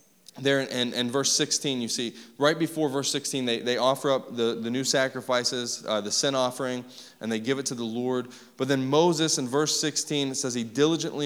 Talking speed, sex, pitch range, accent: 220 wpm, male, 140-190 Hz, American